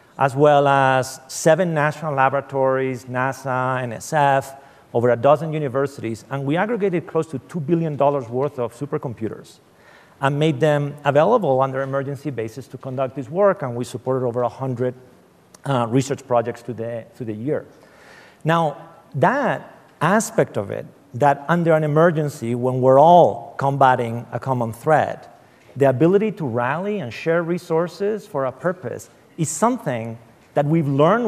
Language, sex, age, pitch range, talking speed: English, male, 40-59, 125-155 Hz, 150 wpm